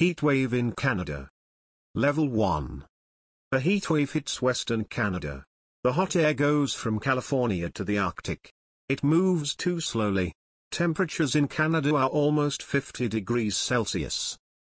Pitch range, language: 100-145 Hz, Greek